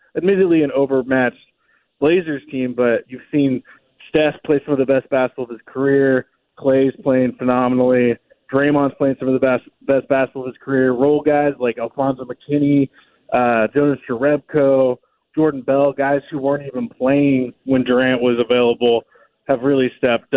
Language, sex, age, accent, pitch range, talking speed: English, male, 20-39, American, 130-150 Hz, 160 wpm